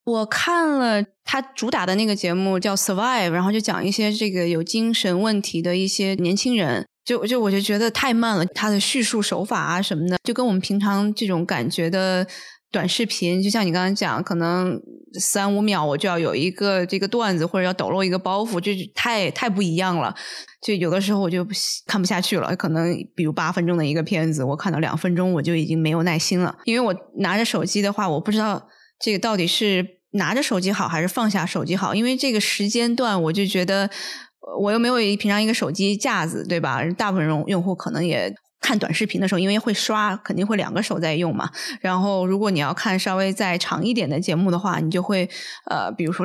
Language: Chinese